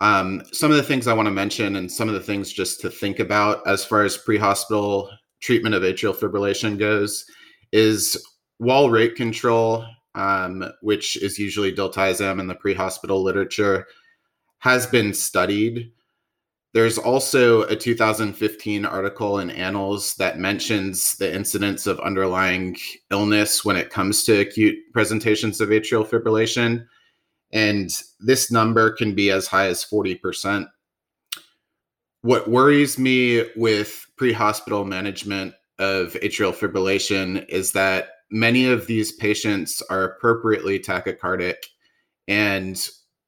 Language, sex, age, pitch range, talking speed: English, male, 30-49, 100-115 Hz, 130 wpm